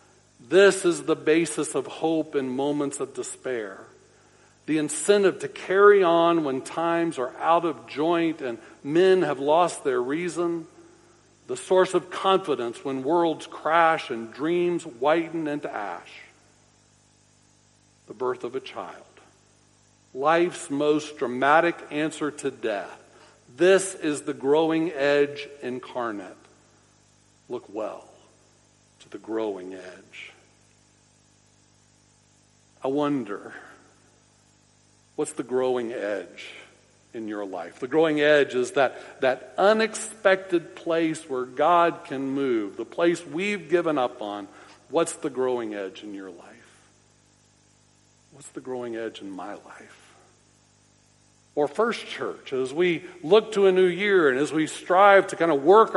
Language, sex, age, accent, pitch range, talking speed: English, male, 60-79, American, 120-175 Hz, 130 wpm